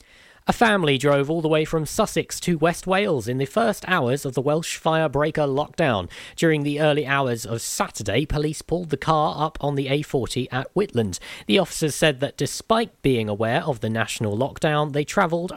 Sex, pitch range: male, 130-170 Hz